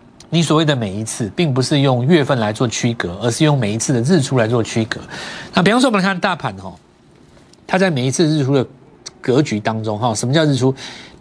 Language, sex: Chinese, male